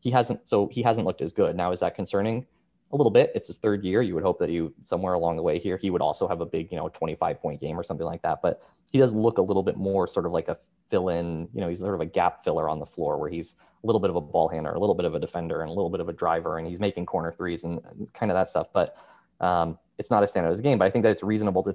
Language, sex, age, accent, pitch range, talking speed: English, male, 20-39, American, 85-105 Hz, 325 wpm